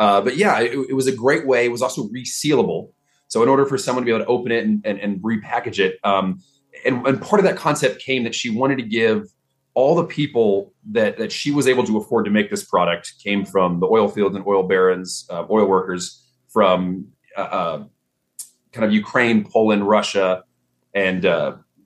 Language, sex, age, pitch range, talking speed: English, male, 30-49, 95-125 Hz, 210 wpm